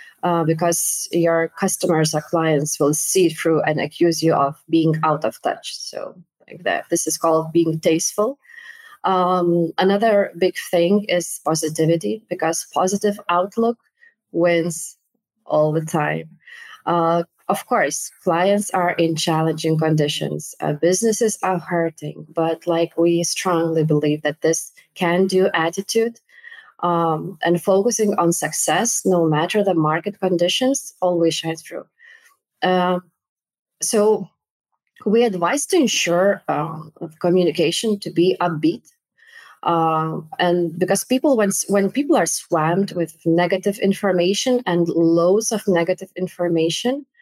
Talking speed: 130 wpm